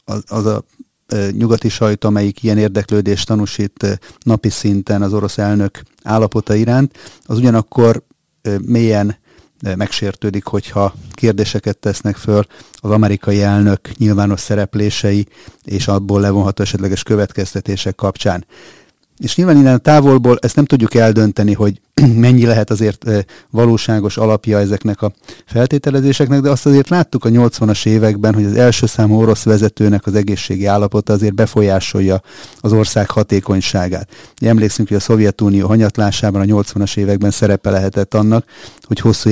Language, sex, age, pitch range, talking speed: Hungarian, male, 30-49, 100-110 Hz, 135 wpm